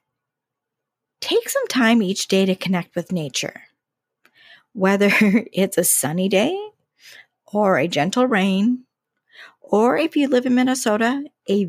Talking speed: 130 wpm